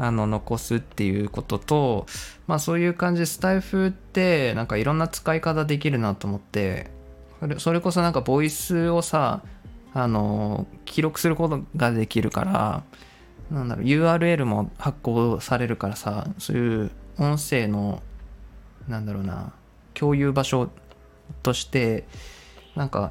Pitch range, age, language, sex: 105-145 Hz, 20-39, Japanese, male